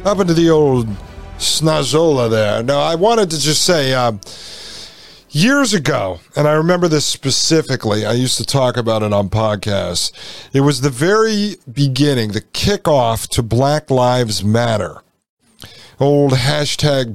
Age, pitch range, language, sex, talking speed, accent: 50-69, 120-160 Hz, English, male, 145 wpm, American